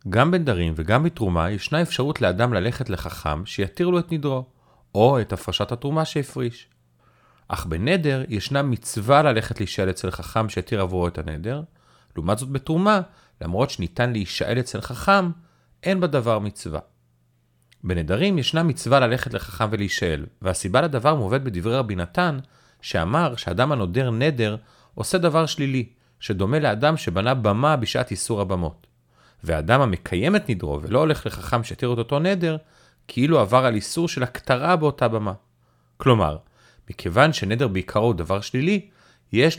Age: 40-59